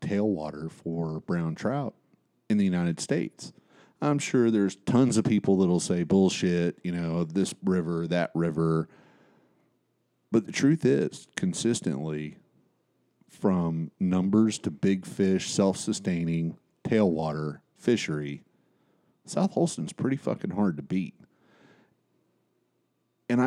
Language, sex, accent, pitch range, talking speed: English, male, American, 85-125 Hz, 115 wpm